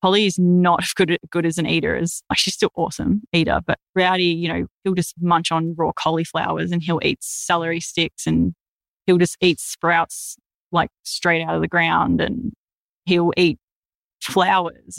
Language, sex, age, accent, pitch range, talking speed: English, female, 20-39, Australian, 165-195 Hz, 175 wpm